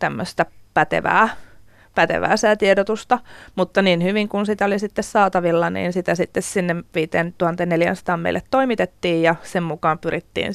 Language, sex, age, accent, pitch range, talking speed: Finnish, female, 30-49, native, 165-205 Hz, 135 wpm